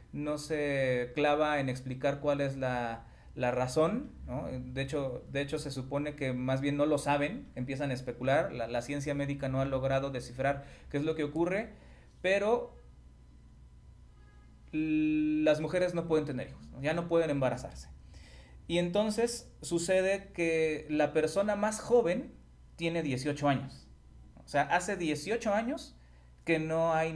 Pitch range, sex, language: 115-160 Hz, male, Spanish